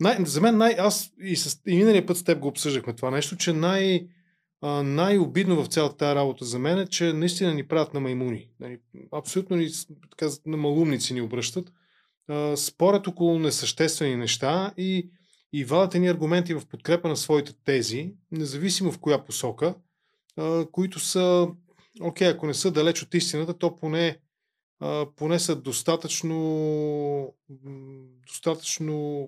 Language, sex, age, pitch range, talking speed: Bulgarian, male, 20-39, 135-170 Hz, 140 wpm